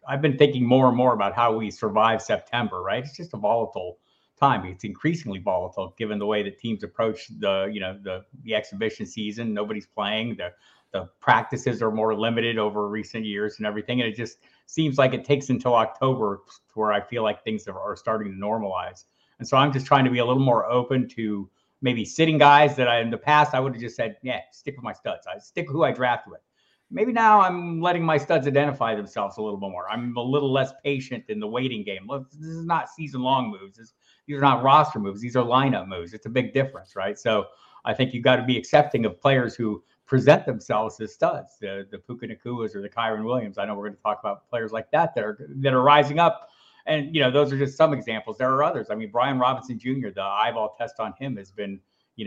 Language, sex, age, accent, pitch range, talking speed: English, male, 50-69, American, 110-140 Hz, 240 wpm